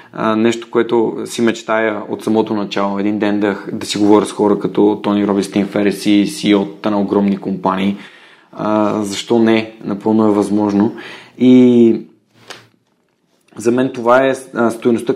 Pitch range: 105-120 Hz